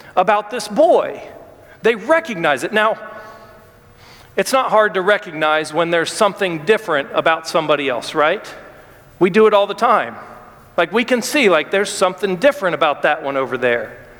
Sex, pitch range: male, 205-280 Hz